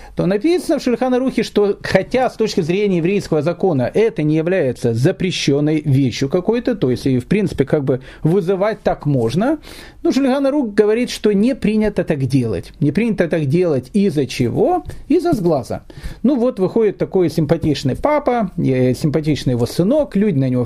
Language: Russian